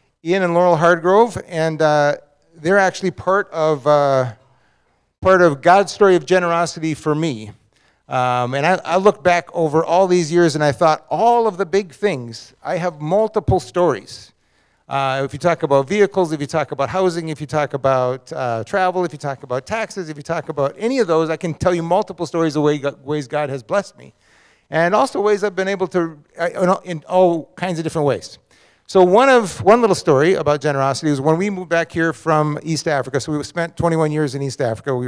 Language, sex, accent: English, male, American